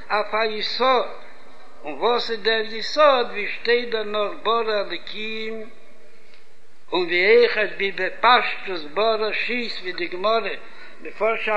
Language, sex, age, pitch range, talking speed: Hebrew, male, 60-79, 220-250 Hz, 85 wpm